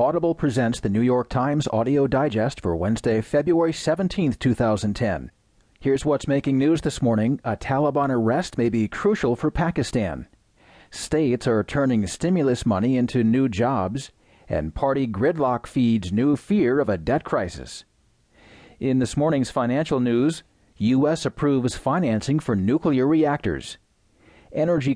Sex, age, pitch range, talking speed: male, 40-59, 110-140 Hz, 135 wpm